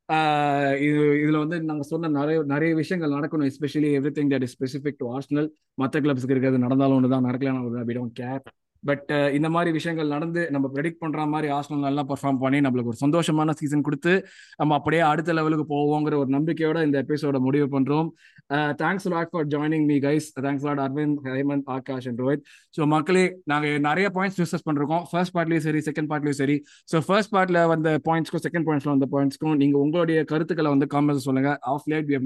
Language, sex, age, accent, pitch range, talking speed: Tamil, male, 20-39, native, 140-160 Hz, 185 wpm